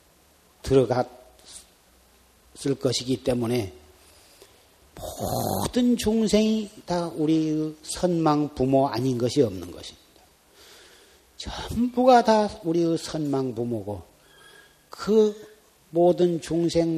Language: Korean